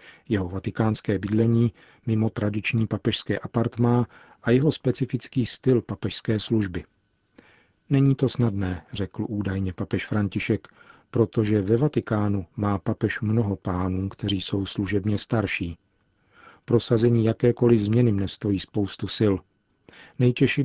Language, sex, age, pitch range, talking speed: Czech, male, 40-59, 100-115 Hz, 110 wpm